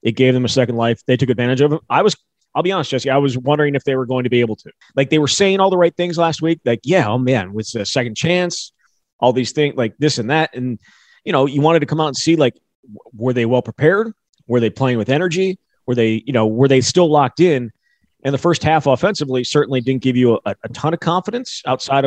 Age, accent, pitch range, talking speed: 30-49, American, 120-145 Hz, 260 wpm